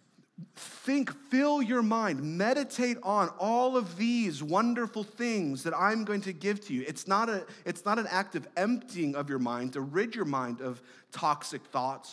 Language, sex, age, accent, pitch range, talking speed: English, male, 30-49, American, 145-210 Hz, 185 wpm